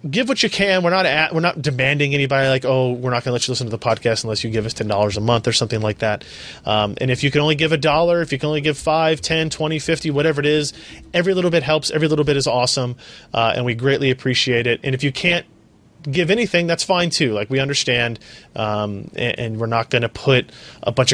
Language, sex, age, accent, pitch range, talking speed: English, male, 30-49, American, 115-145 Hz, 265 wpm